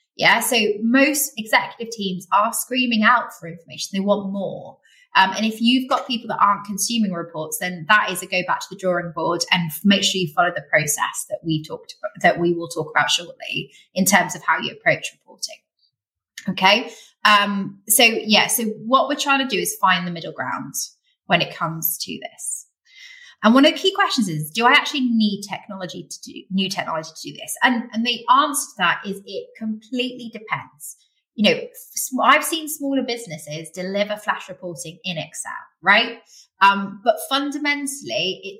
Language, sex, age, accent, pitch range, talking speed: English, female, 20-39, British, 185-245 Hz, 190 wpm